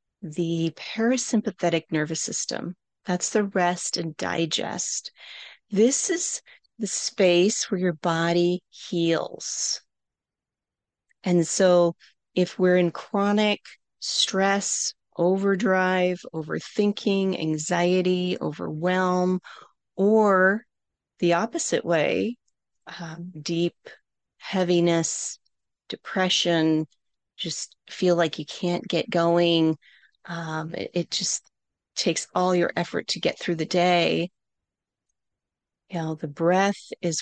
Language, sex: English, female